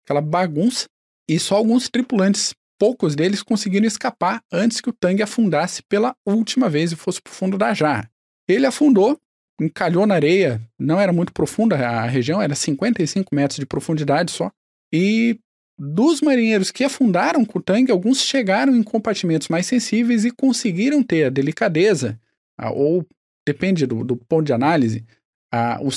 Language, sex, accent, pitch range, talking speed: Portuguese, male, Brazilian, 145-215 Hz, 160 wpm